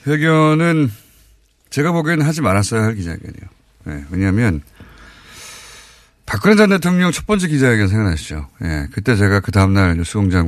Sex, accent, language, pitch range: male, native, Korean, 95-150 Hz